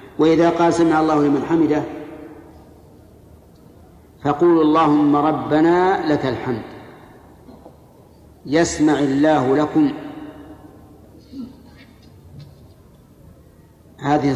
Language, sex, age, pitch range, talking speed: Arabic, male, 50-69, 135-160 Hz, 65 wpm